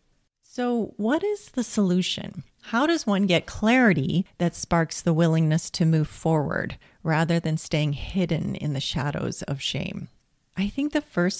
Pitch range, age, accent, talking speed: 150-195 Hz, 40-59, American, 160 wpm